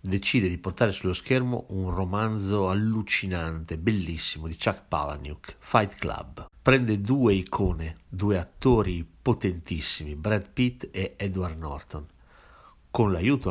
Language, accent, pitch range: Italian, native, 85-115 Hz